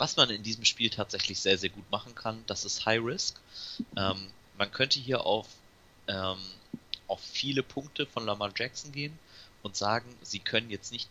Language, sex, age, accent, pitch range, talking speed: German, male, 30-49, German, 95-110 Hz, 180 wpm